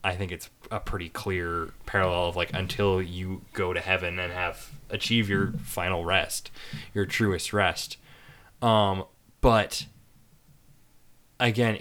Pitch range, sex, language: 95-115 Hz, male, English